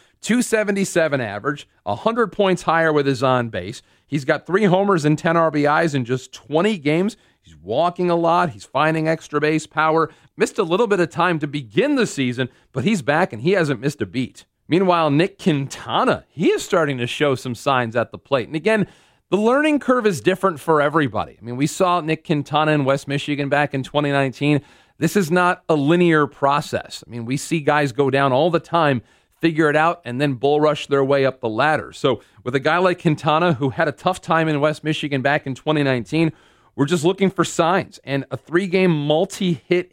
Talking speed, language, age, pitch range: 205 wpm, English, 40-59, 135-170 Hz